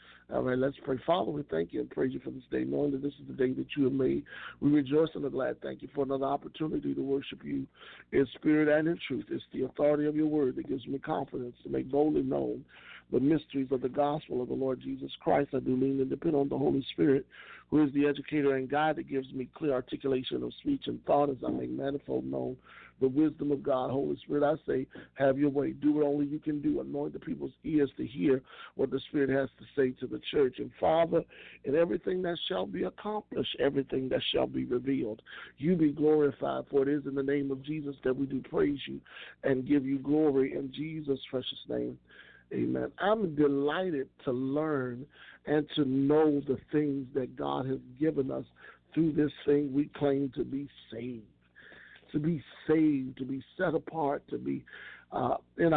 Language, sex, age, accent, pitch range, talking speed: English, male, 50-69, American, 130-150 Hz, 215 wpm